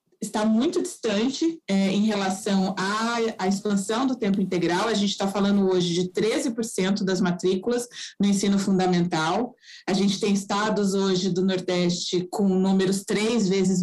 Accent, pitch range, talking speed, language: Brazilian, 195-235 Hz, 150 wpm, Portuguese